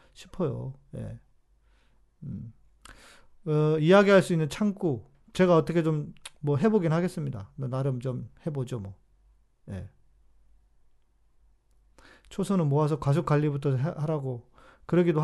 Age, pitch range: 40-59, 130-165 Hz